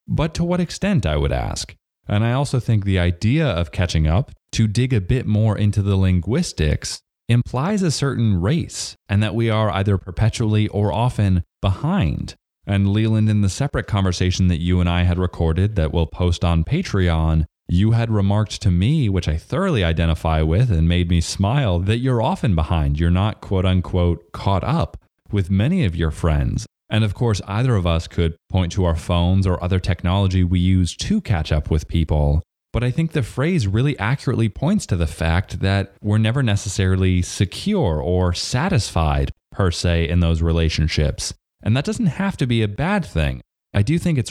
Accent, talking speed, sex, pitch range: American, 190 wpm, male, 85-110 Hz